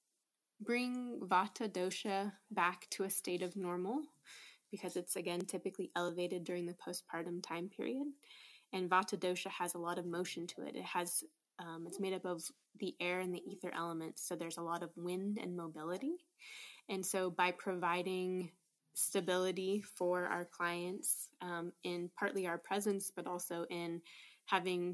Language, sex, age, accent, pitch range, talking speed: English, female, 20-39, American, 170-190 Hz, 160 wpm